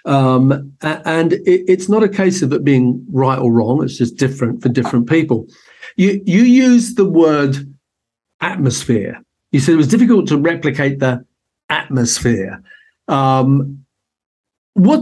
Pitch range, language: 130-170 Hz, English